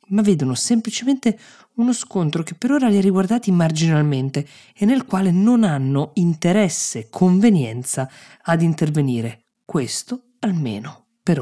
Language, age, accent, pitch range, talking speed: Italian, 20-39, native, 140-190 Hz, 125 wpm